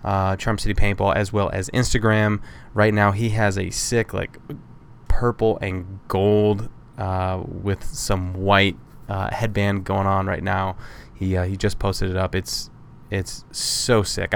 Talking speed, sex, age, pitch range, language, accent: 165 wpm, male, 20-39, 95-115 Hz, English, American